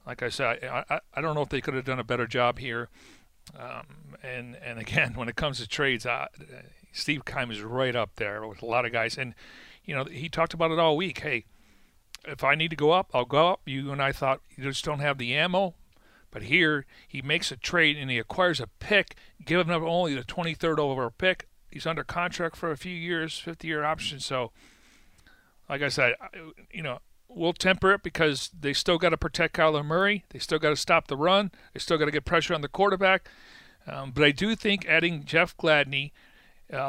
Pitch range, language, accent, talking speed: 135-165 Hz, English, American, 225 wpm